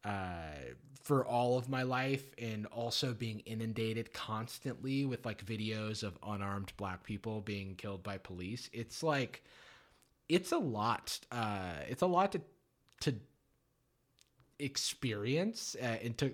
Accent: American